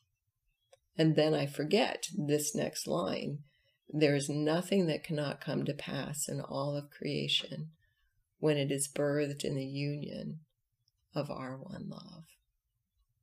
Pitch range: 105-150 Hz